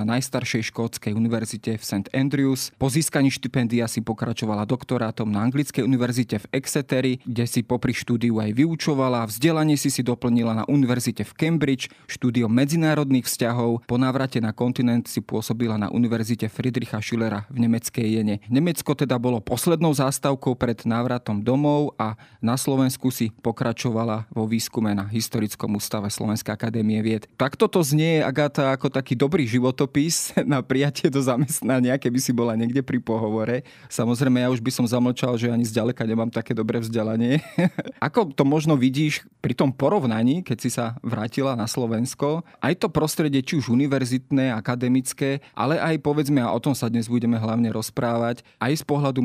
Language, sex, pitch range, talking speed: Slovak, male, 115-135 Hz, 165 wpm